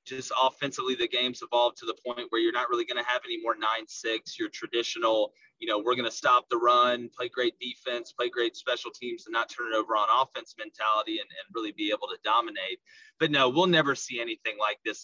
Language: English